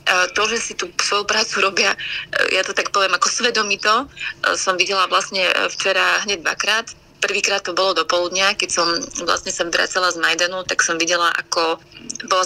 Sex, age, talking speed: female, 30-49, 175 wpm